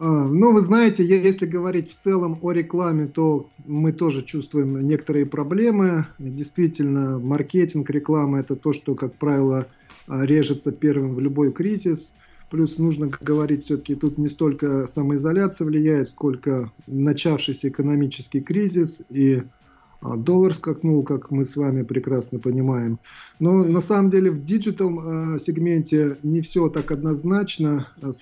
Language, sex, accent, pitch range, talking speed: Russian, male, native, 135-160 Hz, 135 wpm